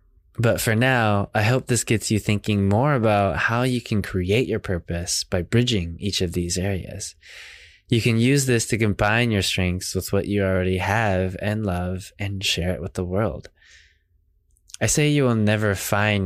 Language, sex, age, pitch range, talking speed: English, male, 20-39, 90-110 Hz, 185 wpm